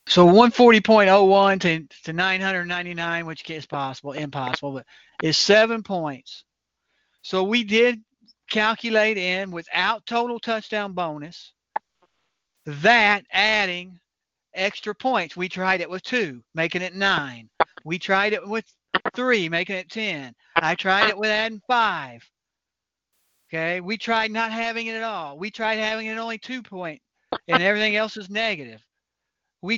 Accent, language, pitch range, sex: American, English, 170-215 Hz, male